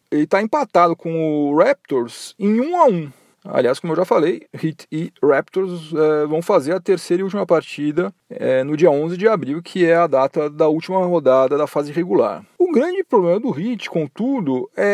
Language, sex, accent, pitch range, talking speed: Portuguese, male, Brazilian, 165-235 Hz, 195 wpm